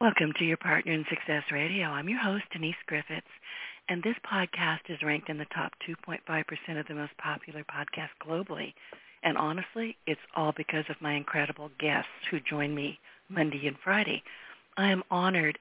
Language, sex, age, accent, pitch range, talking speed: English, female, 50-69, American, 150-175 Hz, 175 wpm